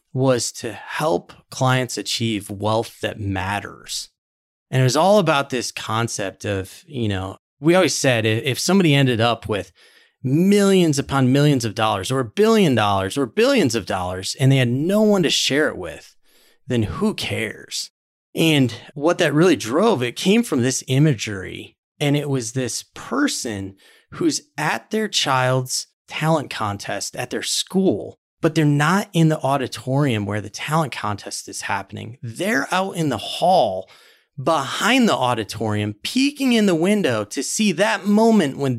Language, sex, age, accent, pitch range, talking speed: English, male, 30-49, American, 110-160 Hz, 160 wpm